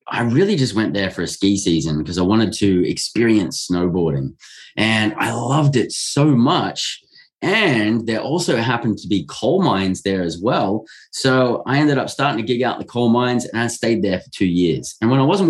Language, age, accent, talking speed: English, 20-39, Australian, 210 wpm